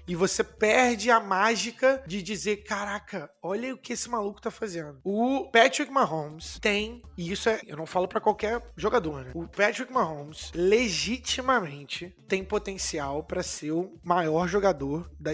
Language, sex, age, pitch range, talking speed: Portuguese, male, 20-39, 180-230 Hz, 160 wpm